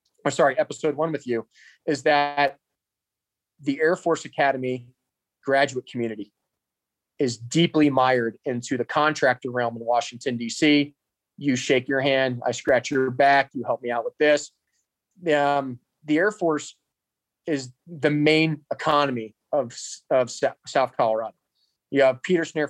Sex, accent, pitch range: male, American, 130-155 Hz